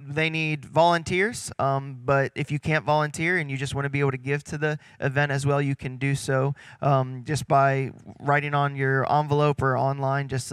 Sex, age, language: male, 20-39, English